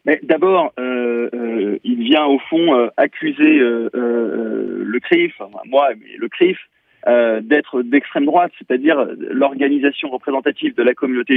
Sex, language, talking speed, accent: male, French, 155 wpm, French